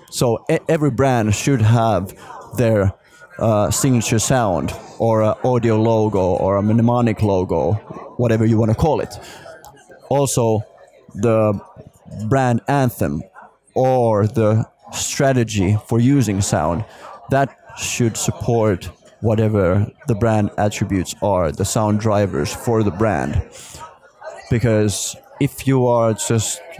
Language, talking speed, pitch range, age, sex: Swedish, 115 wpm, 105-120 Hz, 20-39, male